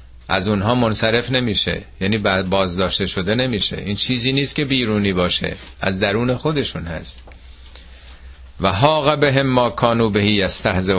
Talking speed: 140 wpm